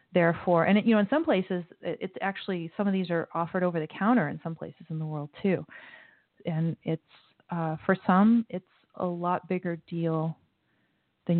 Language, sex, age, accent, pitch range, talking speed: English, female, 30-49, American, 160-185 Hz, 190 wpm